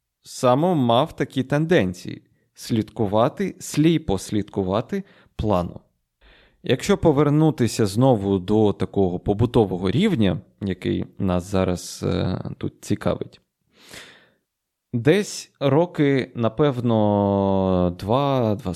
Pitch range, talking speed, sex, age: 100-150 Hz, 80 wpm, male, 20-39